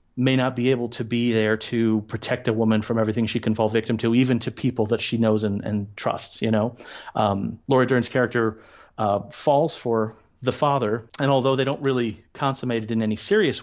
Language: English